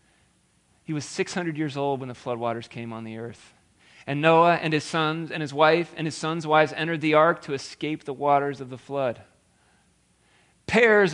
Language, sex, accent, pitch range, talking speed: English, male, American, 115-165 Hz, 190 wpm